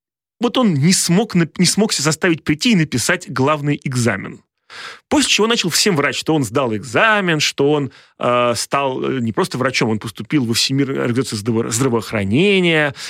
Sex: male